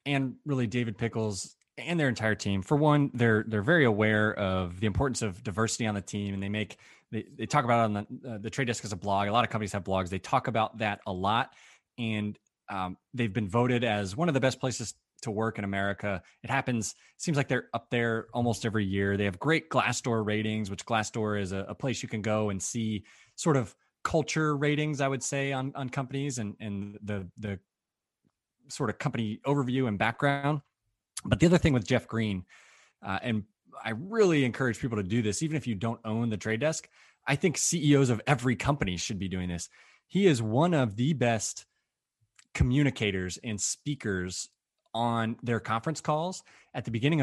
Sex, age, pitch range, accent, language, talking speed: male, 20-39, 105-135 Hz, American, English, 205 wpm